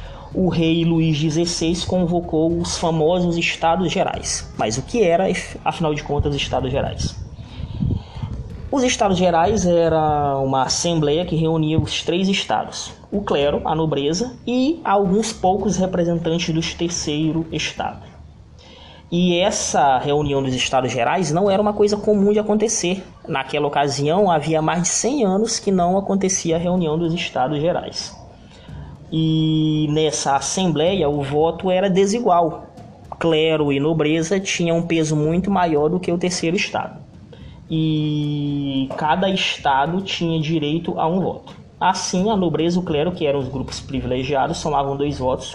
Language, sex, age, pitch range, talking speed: Portuguese, male, 20-39, 135-175 Hz, 145 wpm